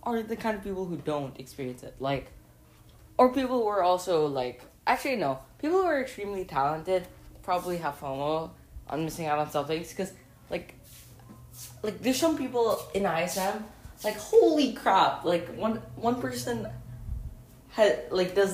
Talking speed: 160 wpm